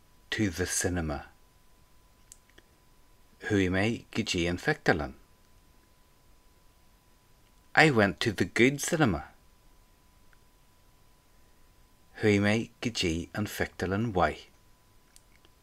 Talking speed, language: 75 wpm, English